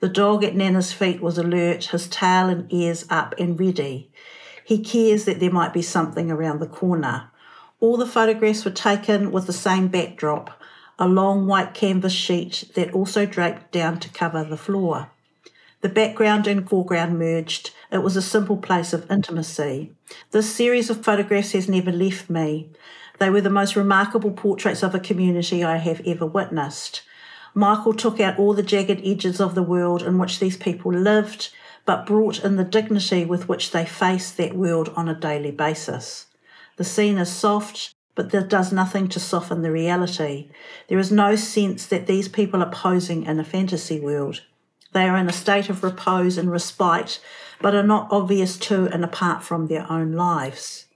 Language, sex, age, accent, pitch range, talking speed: English, female, 50-69, Australian, 170-205 Hz, 180 wpm